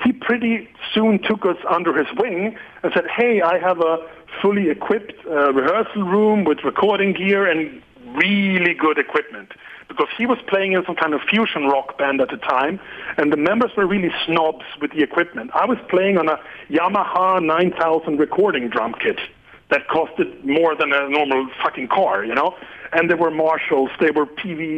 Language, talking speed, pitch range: Hebrew, 185 wpm, 155-205 Hz